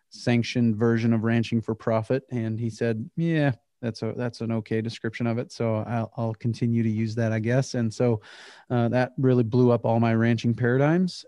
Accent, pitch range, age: American, 115-125 Hz, 30-49